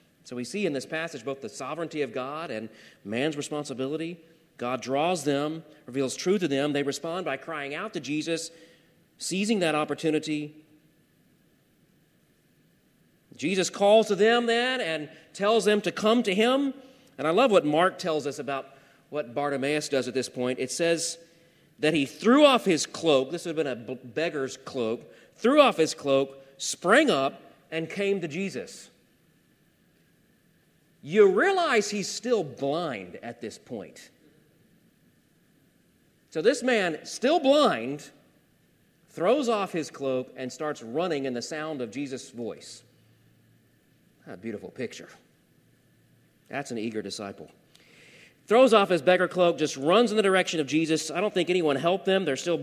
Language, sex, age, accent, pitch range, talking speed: English, male, 40-59, American, 140-185 Hz, 155 wpm